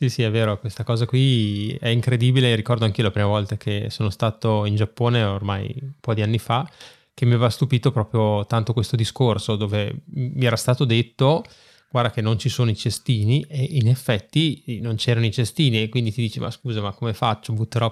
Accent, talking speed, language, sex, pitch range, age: native, 210 wpm, Italian, male, 110-125 Hz, 20-39